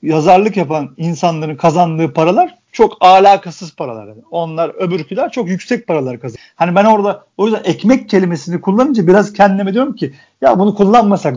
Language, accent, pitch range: Turkish, native, 165-210 Hz